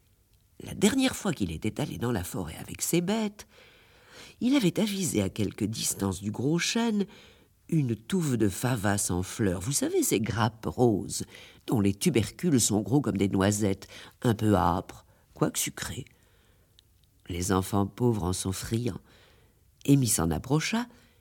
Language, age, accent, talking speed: French, 50-69, French, 155 wpm